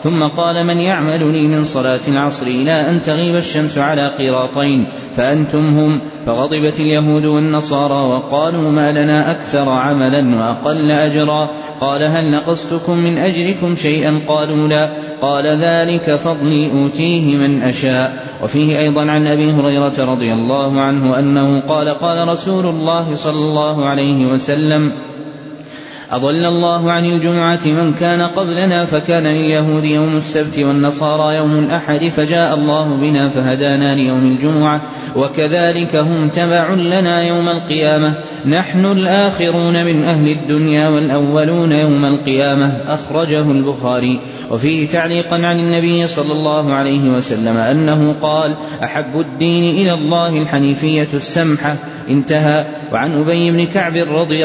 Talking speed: 125 wpm